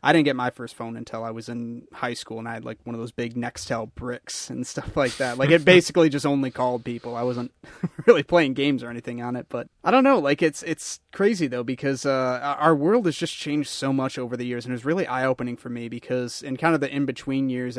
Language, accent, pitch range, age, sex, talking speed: English, American, 120-140 Hz, 30-49, male, 265 wpm